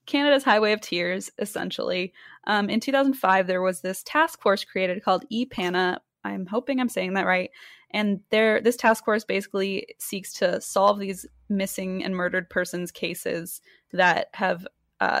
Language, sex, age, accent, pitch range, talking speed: English, female, 20-39, American, 185-215 Hz, 160 wpm